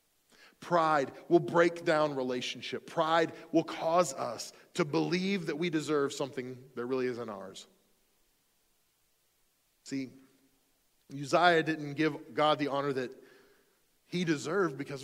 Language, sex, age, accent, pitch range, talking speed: English, male, 40-59, American, 130-170 Hz, 120 wpm